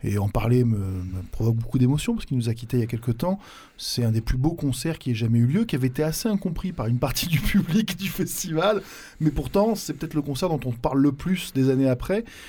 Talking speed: 265 wpm